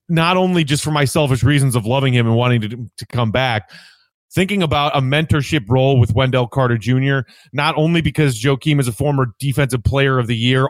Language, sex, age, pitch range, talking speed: English, male, 30-49, 125-155 Hz, 205 wpm